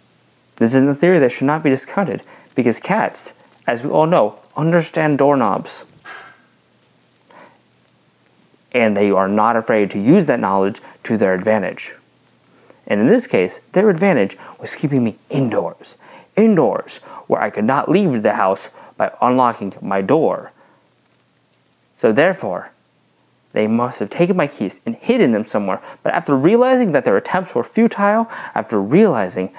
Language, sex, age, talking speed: English, male, 30-49, 150 wpm